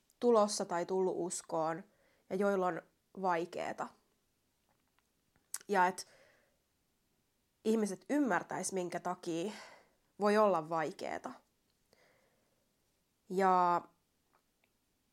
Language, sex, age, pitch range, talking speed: Finnish, female, 20-39, 175-205 Hz, 70 wpm